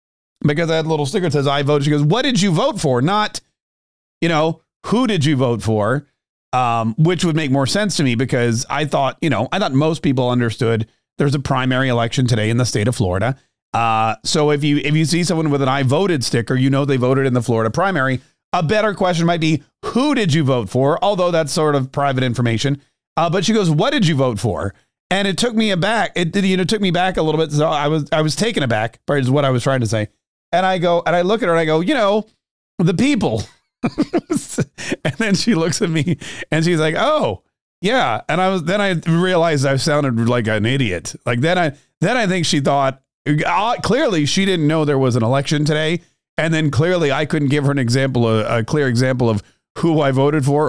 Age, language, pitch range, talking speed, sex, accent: 40-59, English, 130-170 Hz, 240 wpm, male, American